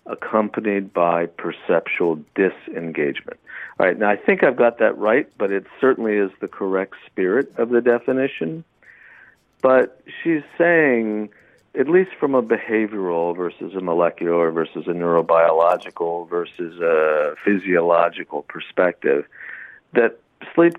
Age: 50-69